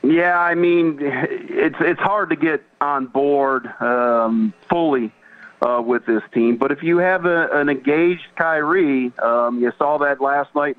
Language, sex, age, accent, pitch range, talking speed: English, male, 50-69, American, 125-155 Hz, 165 wpm